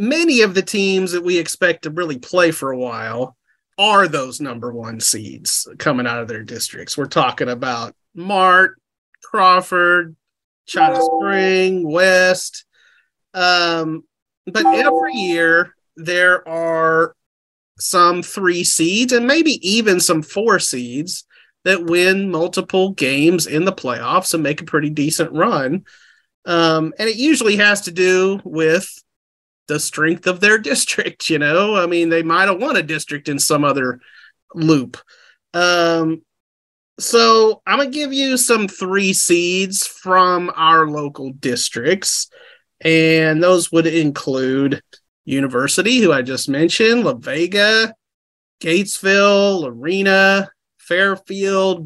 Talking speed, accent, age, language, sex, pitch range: 130 wpm, American, 30-49, English, male, 160-195 Hz